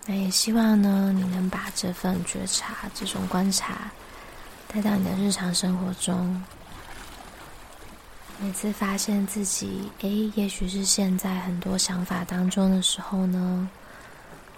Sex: female